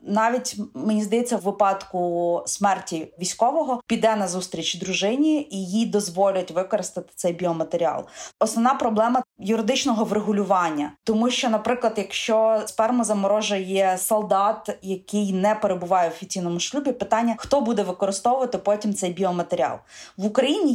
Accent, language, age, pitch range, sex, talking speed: native, Ukrainian, 20-39, 190-235 Hz, female, 125 wpm